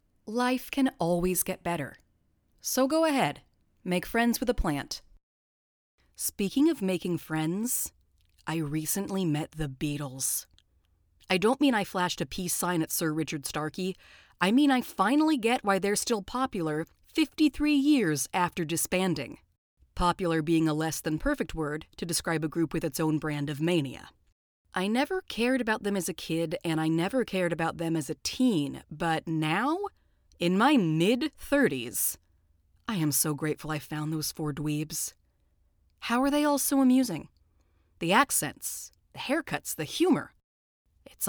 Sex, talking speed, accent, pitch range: female, 155 wpm, American, 155-215 Hz